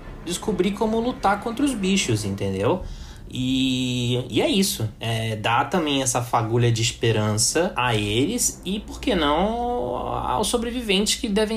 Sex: male